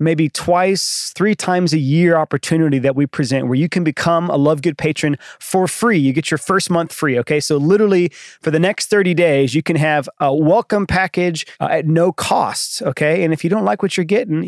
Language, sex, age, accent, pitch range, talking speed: English, male, 30-49, American, 140-170 Hz, 215 wpm